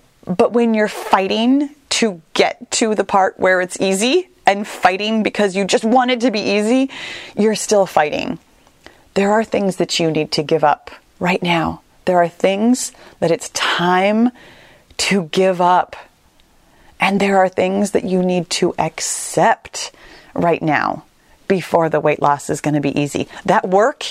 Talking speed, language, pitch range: 165 wpm, English, 175-225 Hz